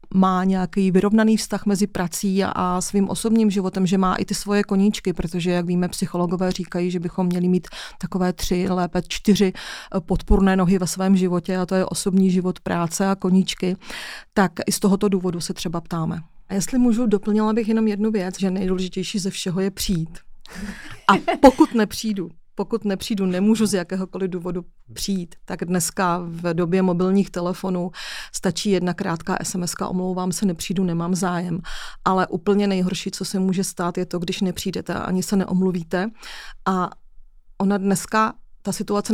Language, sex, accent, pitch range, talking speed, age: Czech, female, native, 180-200 Hz, 165 wpm, 40-59